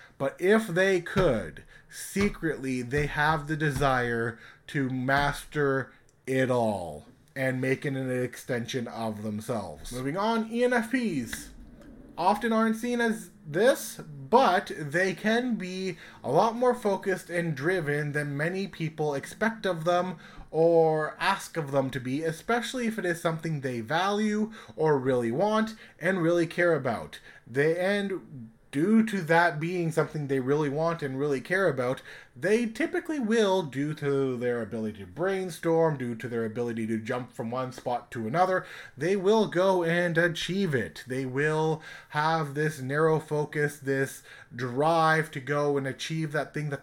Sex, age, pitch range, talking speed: male, 20-39, 135-185 Hz, 150 wpm